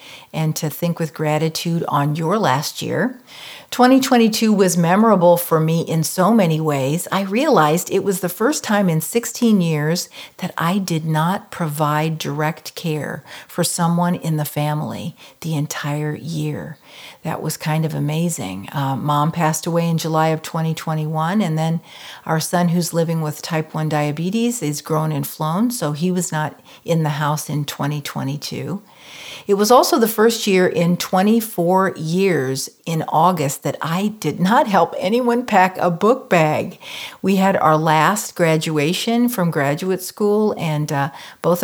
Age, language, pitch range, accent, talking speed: 50-69, English, 155-190 Hz, American, 160 wpm